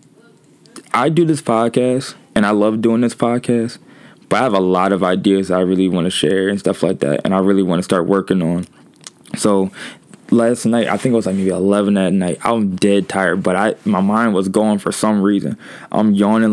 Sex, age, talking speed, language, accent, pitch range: male, 20-39, 220 wpm, English, American, 95-115 Hz